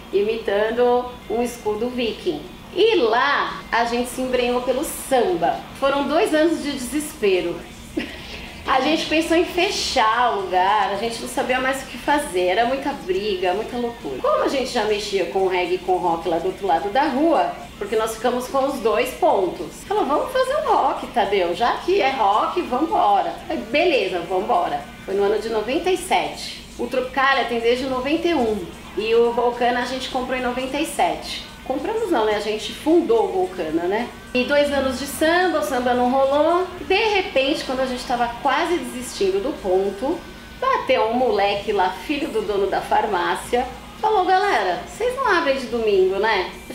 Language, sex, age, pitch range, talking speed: Portuguese, female, 30-49, 225-315 Hz, 180 wpm